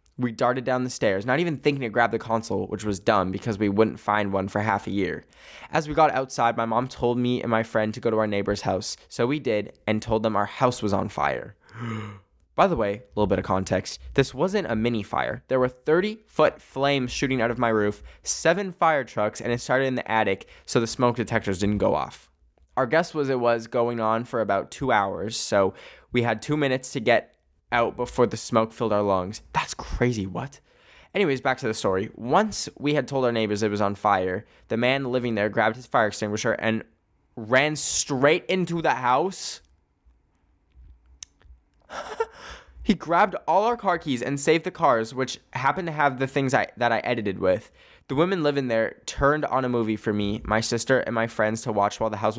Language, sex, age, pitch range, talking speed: English, male, 10-29, 105-130 Hz, 215 wpm